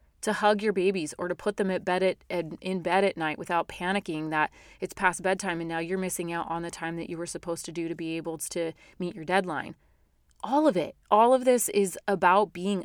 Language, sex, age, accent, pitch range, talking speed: English, female, 30-49, American, 165-195 Hz, 225 wpm